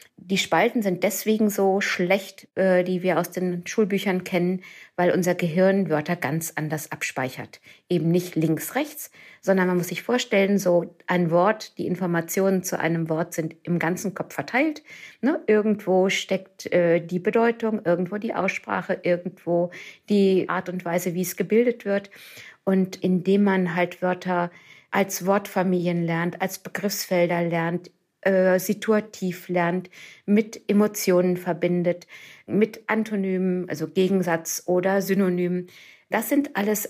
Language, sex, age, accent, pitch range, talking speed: German, female, 50-69, German, 175-200 Hz, 135 wpm